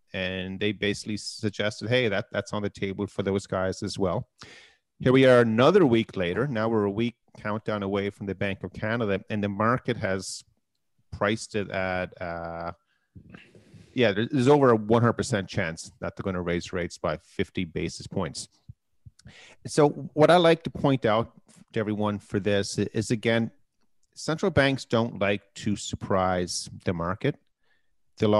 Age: 30-49